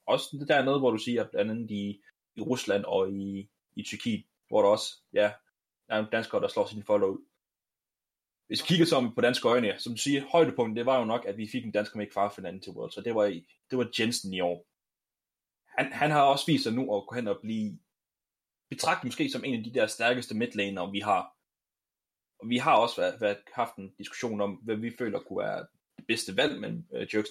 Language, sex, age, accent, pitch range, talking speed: Danish, male, 20-39, native, 105-140 Hz, 230 wpm